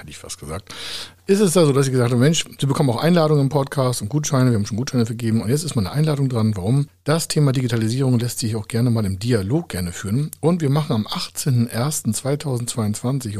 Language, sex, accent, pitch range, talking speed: German, male, German, 110-140 Hz, 230 wpm